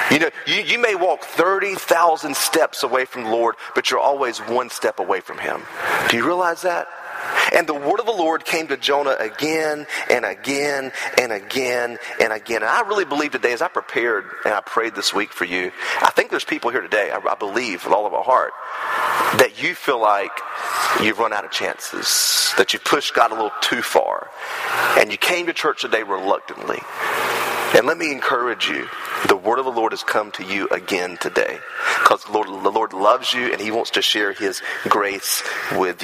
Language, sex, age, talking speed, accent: English, male, 30-49, 205 wpm, American